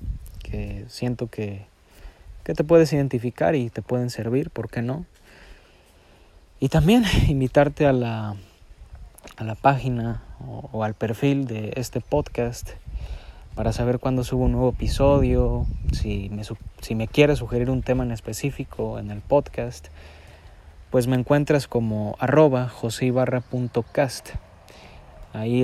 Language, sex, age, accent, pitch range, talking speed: Spanish, male, 30-49, Mexican, 100-130 Hz, 120 wpm